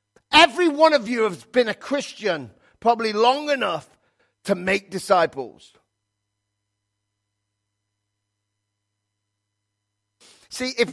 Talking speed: 90 wpm